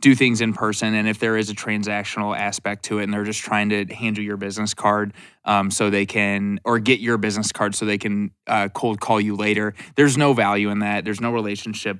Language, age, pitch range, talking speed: English, 20-39, 105-115 Hz, 240 wpm